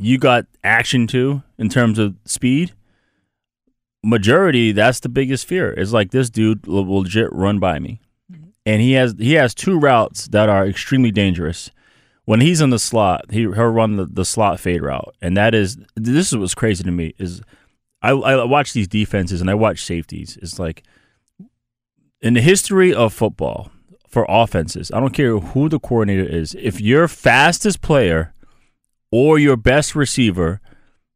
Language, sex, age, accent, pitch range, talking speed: English, male, 30-49, American, 100-130 Hz, 175 wpm